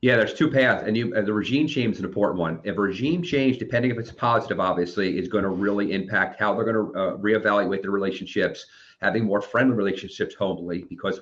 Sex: male